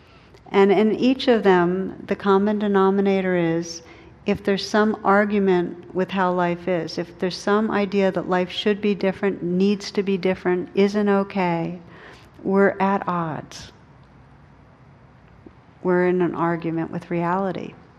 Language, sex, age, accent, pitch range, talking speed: English, female, 60-79, American, 170-195 Hz, 135 wpm